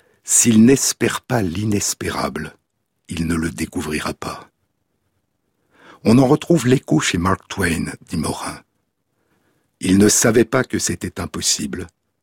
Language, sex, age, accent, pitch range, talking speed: French, male, 60-79, French, 95-115 Hz, 125 wpm